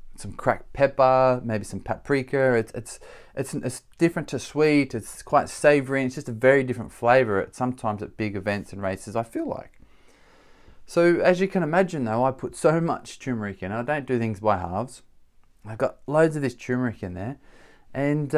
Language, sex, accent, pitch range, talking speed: English, male, Australian, 105-130 Hz, 195 wpm